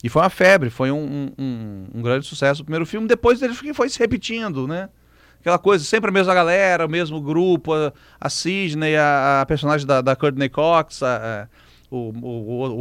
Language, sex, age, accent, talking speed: Portuguese, male, 40-59, Brazilian, 205 wpm